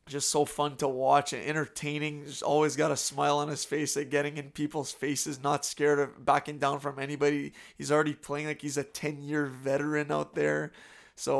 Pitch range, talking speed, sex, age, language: 135-150 Hz, 210 wpm, male, 20-39, English